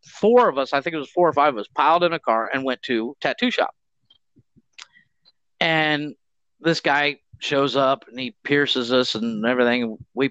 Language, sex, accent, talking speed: English, male, American, 190 wpm